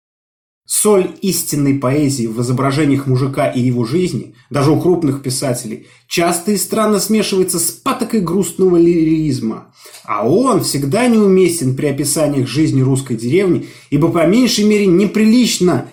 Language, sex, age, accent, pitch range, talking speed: Russian, male, 30-49, native, 135-190 Hz, 130 wpm